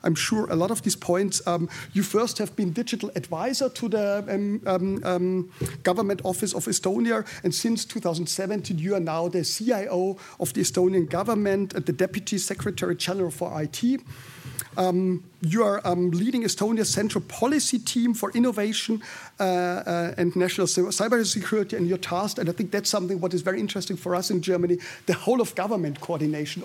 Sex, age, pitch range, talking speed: male, 50-69, 175-210 Hz, 175 wpm